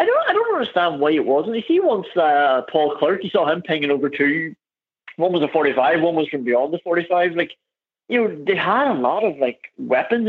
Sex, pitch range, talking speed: male, 135-195 Hz, 235 wpm